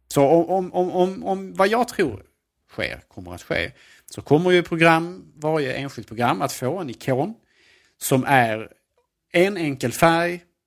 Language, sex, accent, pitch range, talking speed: Swedish, male, Norwegian, 110-145 Hz, 155 wpm